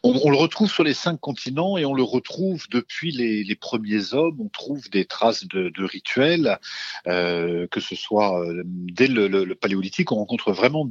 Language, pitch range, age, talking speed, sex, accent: French, 95-150 Hz, 50-69, 205 wpm, male, French